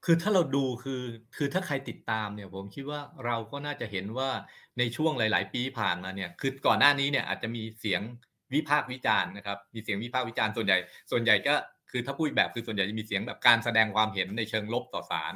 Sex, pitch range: male, 110-135 Hz